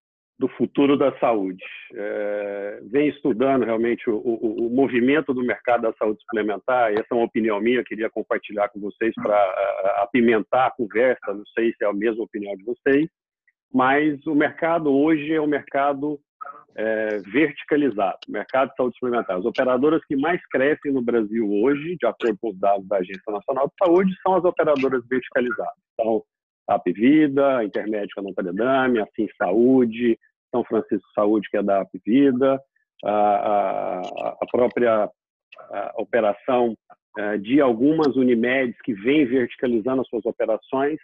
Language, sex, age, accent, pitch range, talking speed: Portuguese, male, 50-69, Brazilian, 115-155 Hz, 150 wpm